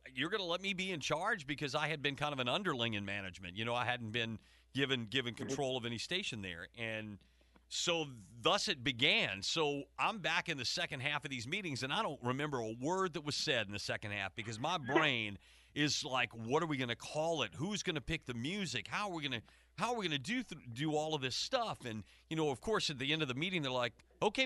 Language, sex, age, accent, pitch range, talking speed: English, male, 40-59, American, 120-185 Hz, 265 wpm